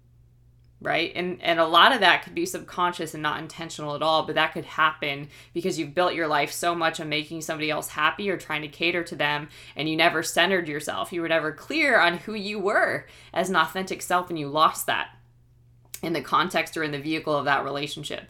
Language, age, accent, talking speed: English, 20-39, American, 225 wpm